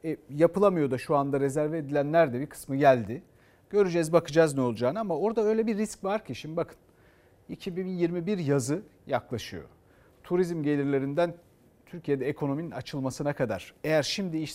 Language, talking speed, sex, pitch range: Turkish, 150 wpm, male, 140-175 Hz